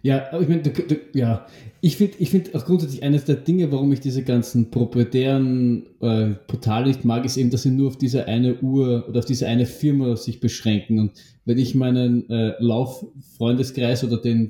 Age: 20-39